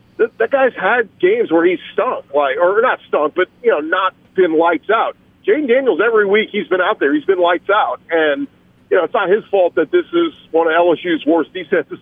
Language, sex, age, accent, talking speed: English, male, 40-59, American, 225 wpm